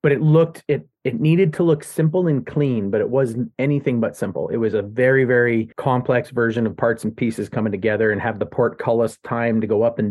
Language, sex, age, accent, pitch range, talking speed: English, male, 30-49, American, 115-135 Hz, 230 wpm